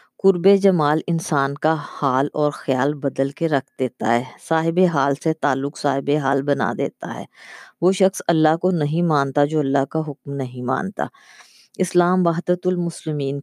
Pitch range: 140-165 Hz